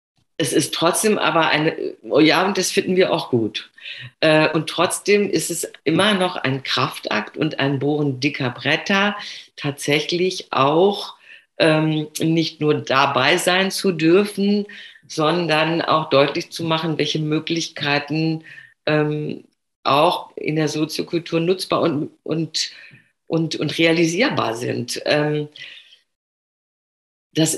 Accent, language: German, German